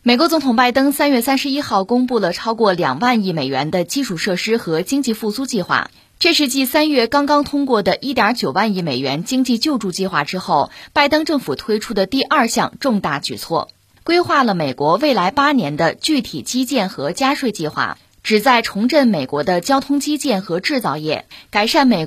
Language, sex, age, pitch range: Chinese, female, 20-39, 170-265 Hz